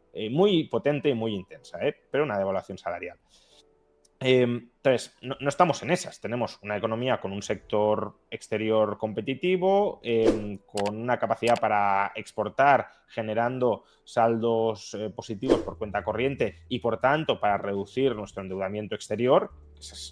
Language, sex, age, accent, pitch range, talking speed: Spanish, male, 20-39, Spanish, 95-120 Hz, 135 wpm